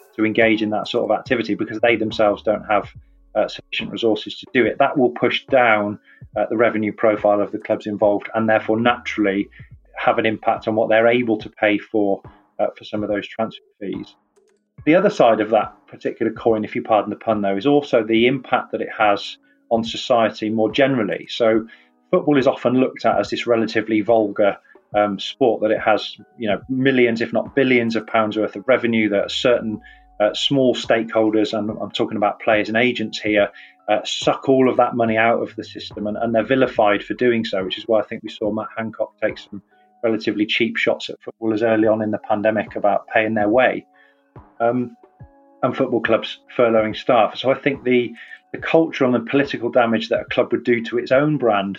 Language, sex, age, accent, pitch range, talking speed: English, male, 30-49, British, 105-120 Hz, 205 wpm